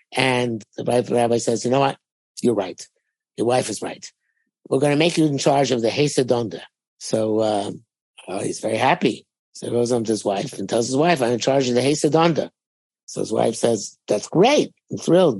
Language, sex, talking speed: English, male, 220 wpm